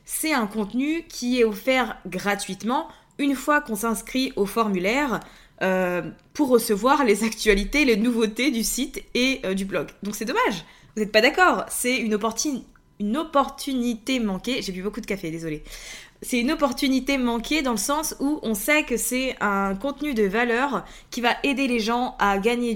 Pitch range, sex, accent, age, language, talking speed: 200-265 Hz, female, French, 20-39, French, 175 wpm